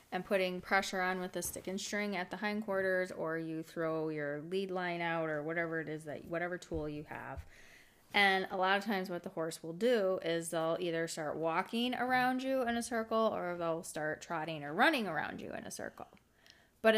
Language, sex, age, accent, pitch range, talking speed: English, female, 20-39, American, 165-210 Hz, 210 wpm